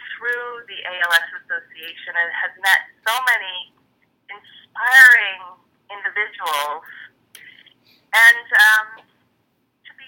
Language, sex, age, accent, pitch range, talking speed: English, female, 30-49, American, 195-300 Hz, 90 wpm